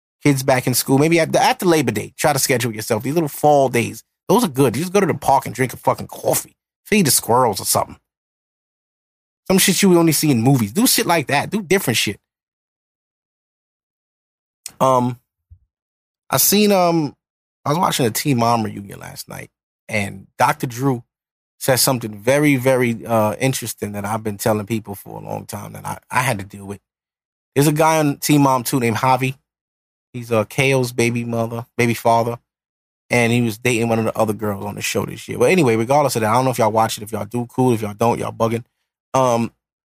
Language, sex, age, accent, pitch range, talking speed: English, male, 20-39, American, 115-155 Hz, 215 wpm